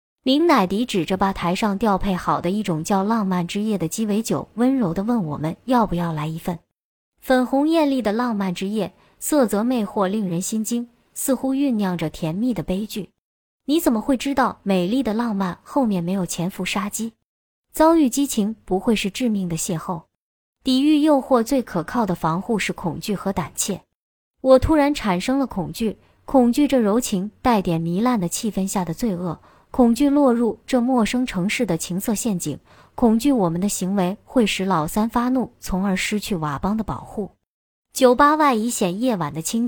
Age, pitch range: 20-39, 185-250 Hz